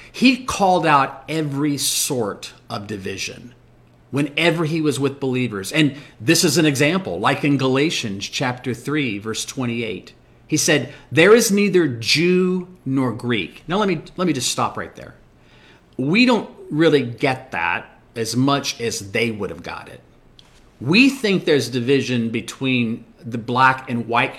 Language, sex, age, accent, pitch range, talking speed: English, male, 40-59, American, 120-170 Hz, 155 wpm